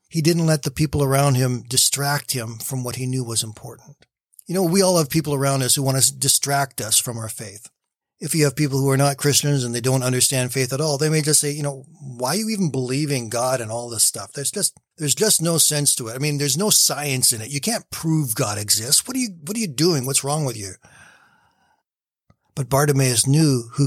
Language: English